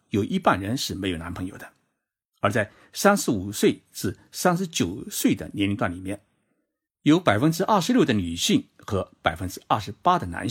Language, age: Chinese, 60-79